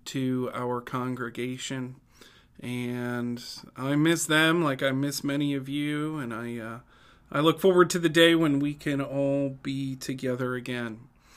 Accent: American